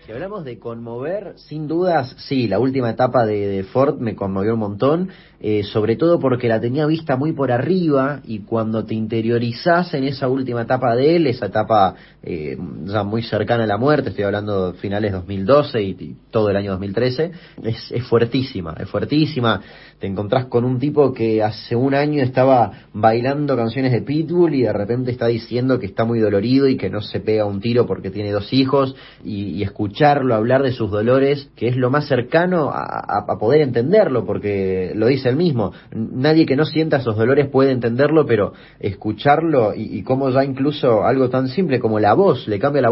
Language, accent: Spanish, Argentinian